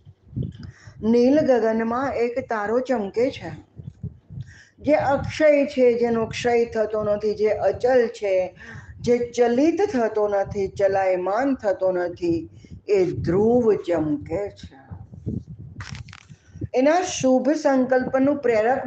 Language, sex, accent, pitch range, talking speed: Gujarati, female, native, 170-245 Hz, 65 wpm